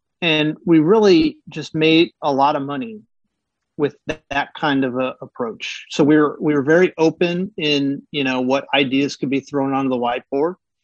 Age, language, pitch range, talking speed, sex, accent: 40-59, English, 135-165 Hz, 190 wpm, male, American